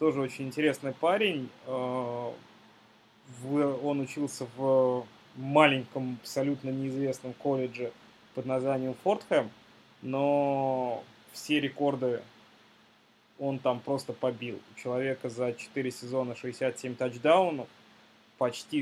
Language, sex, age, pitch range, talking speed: Russian, male, 20-39, 125-145 Hz, 95 wpm